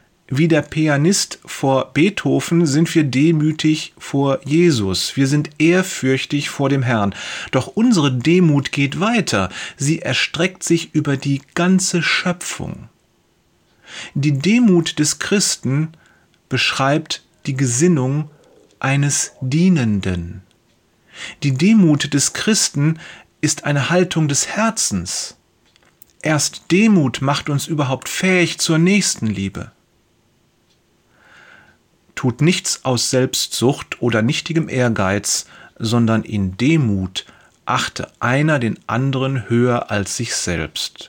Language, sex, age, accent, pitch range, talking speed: German, male, 30-49, German, 120-160 Hz, 105 wpm